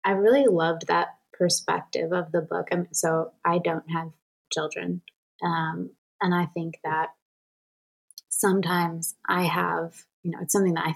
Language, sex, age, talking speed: English, female, 20-39, 150 wpm